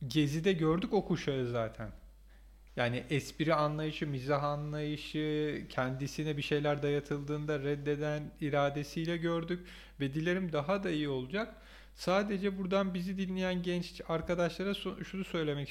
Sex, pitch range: male, 145-185 Hz